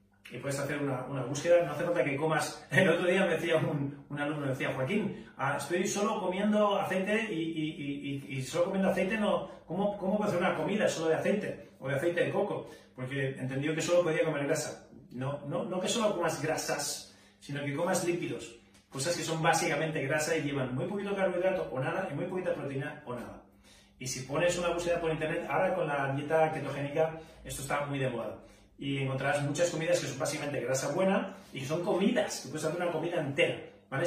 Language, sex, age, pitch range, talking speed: Spanish, male, 30-49, 140-180 Hz, 215 wpm